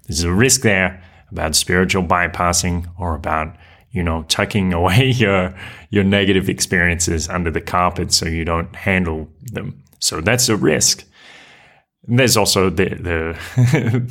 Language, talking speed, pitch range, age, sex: English, 140 wpm, 85-100 Hz, 30-49, male